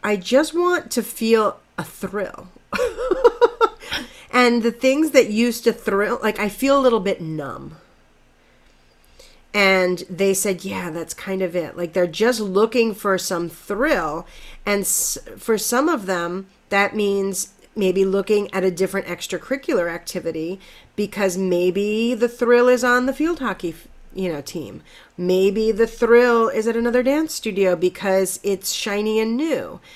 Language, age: English, 40-59